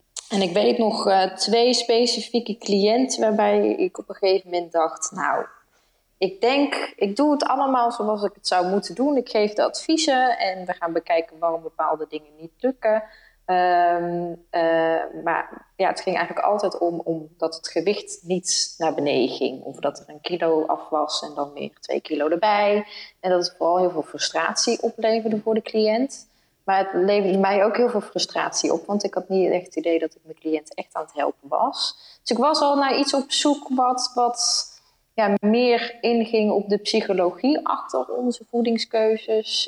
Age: 20-39